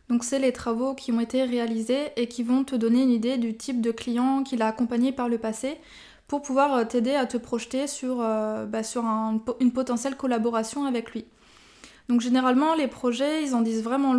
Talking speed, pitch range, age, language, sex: 205 wpm, 240-275 Hz, 20-39, French, female